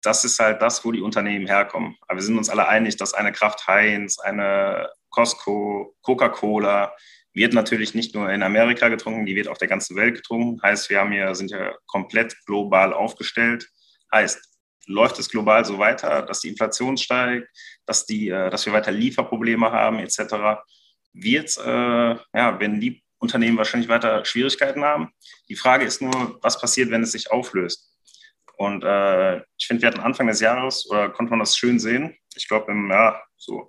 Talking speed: 180 wpm